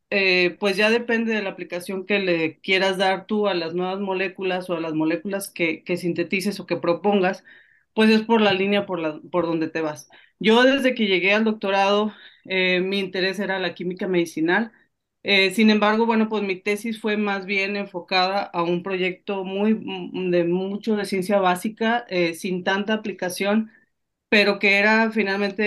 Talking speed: 180 wpm